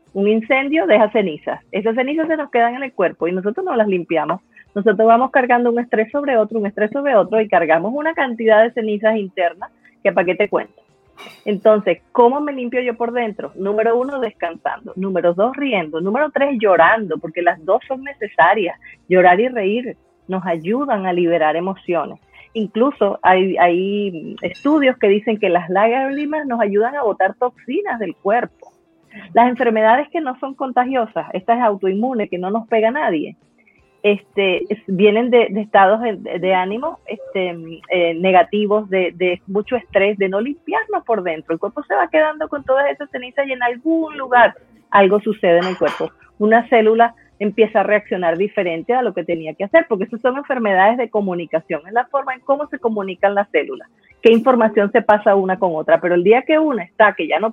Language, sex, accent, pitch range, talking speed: Spanish, female, American, 190-255 Hz, 190 wpm